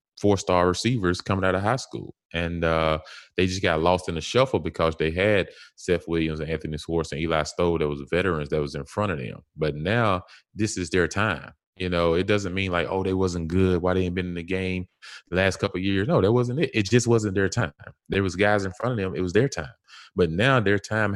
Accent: American